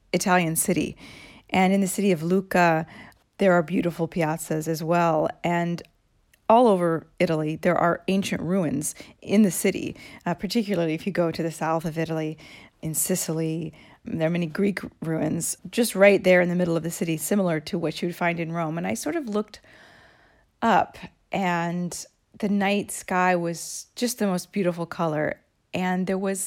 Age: 40-59